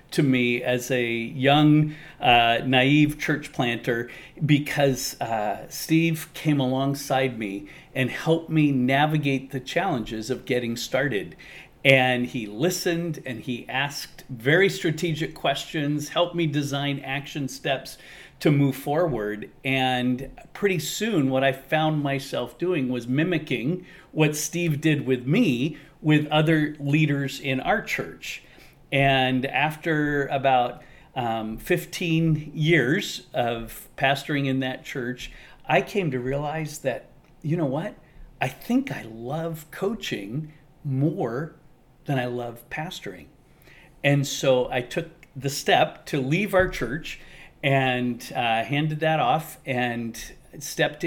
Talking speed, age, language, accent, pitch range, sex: 125 wpm, 40-59, English, American, 130-155 Hz, male